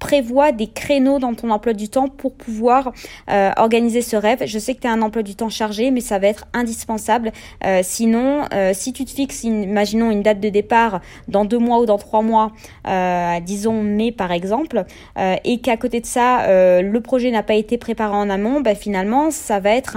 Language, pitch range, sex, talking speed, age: French, 210-260 Hz, female, 220 wpm, 20-39